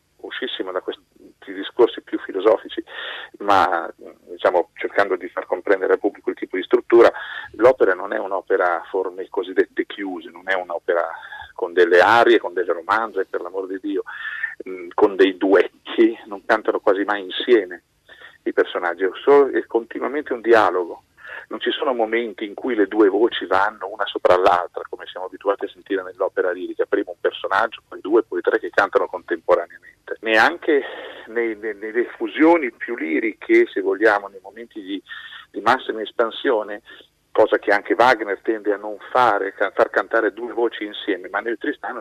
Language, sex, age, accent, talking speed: Italian, male, 40-59, native, 170 wpm